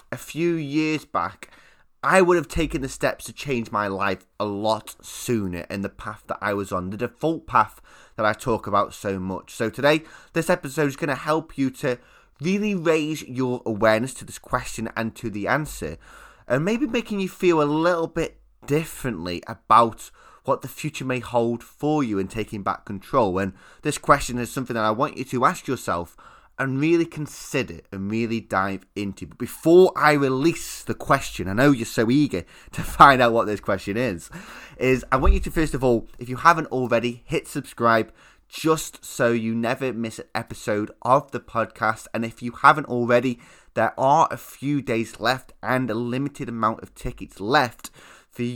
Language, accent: English, British